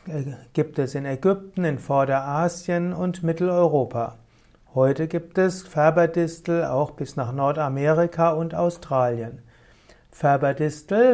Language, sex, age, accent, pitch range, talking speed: German, male, 60-79, German, 135-170 Hz, 100 wpm